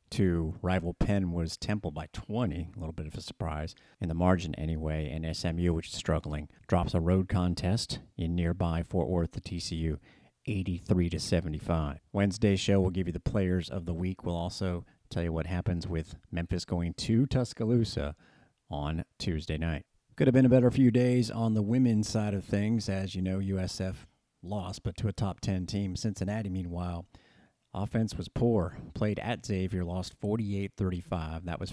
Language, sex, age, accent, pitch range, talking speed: English, male, 40-59, American, 90-110 Hz, 180 wpm